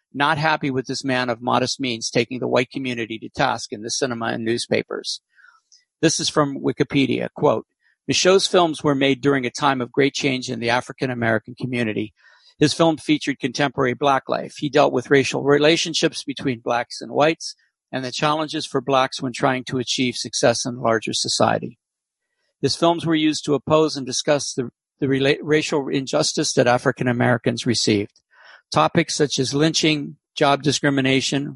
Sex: male